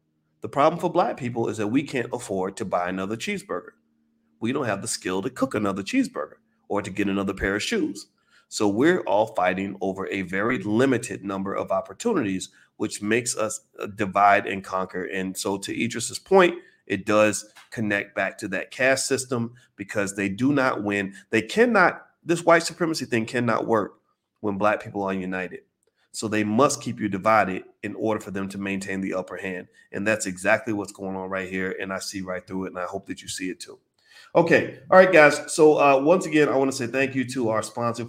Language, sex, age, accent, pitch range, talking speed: English, male, 40-59, American, 100-115 Hz, 210 wpm